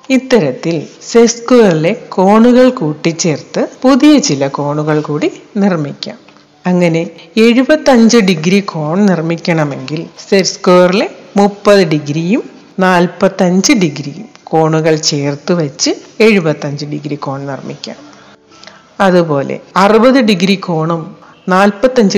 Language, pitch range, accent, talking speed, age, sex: Malayalam, 160-215 Hz, native, 85 wpm, 60-79, female